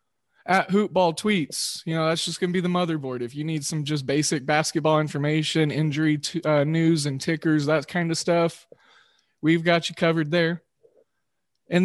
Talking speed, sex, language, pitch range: 180 wpm, male, English, 150-175 Hz